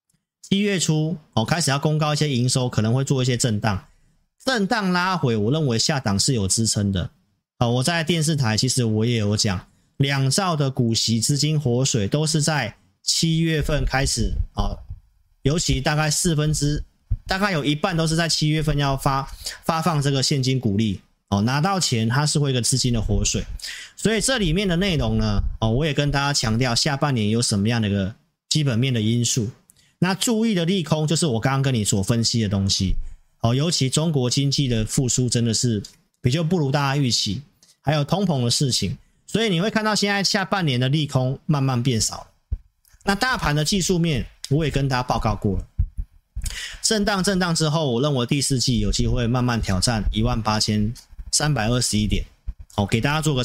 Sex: male